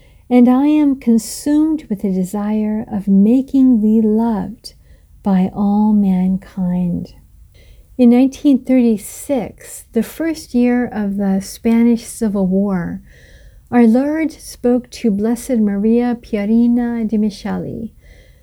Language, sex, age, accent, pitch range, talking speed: English, female, 50-69, American, 200-255 Hz, 105 wpm